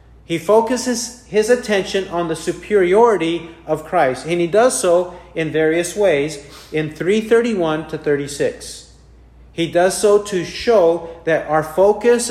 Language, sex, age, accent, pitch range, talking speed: English, male, 40-59, American, 155-200 Hz, 135 wpm